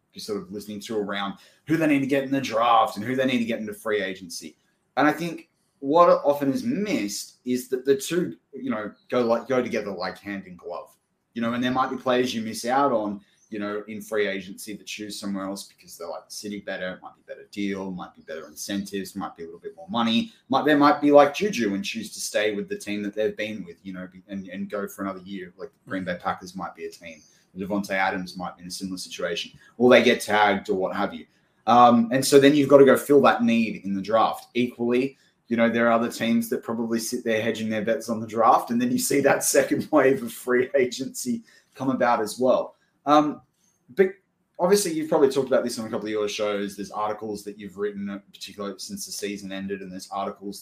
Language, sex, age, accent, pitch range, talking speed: English, male, 20-39, Australian, 100-140 Hz, 245 wpm